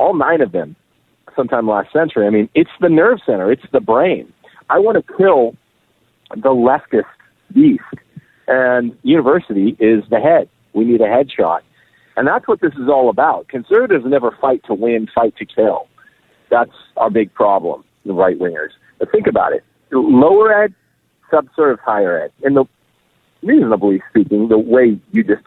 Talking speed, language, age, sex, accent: 170 wpm, English, 50-69, male, American